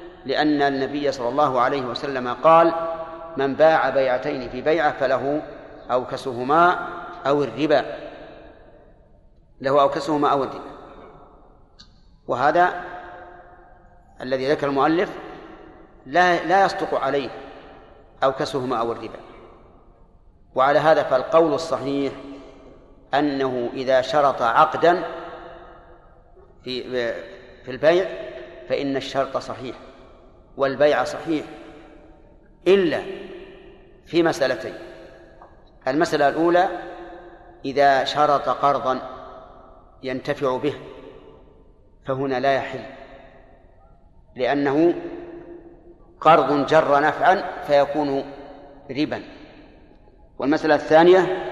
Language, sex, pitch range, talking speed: Arabic, male, 135-175 Hz, 80 wpm